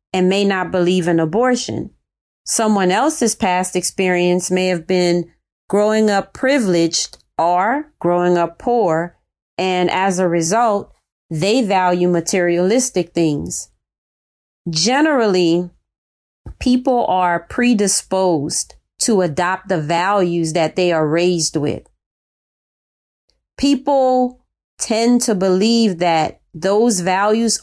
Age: 30-49